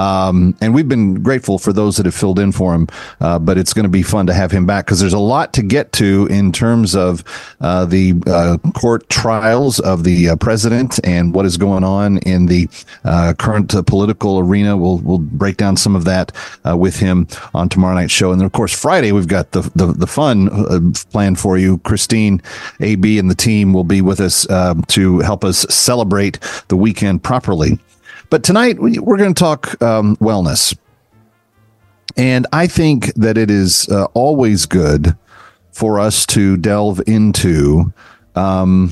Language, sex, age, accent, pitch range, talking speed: English, male, 40-59, American, 90-110 Hz, 190 wpm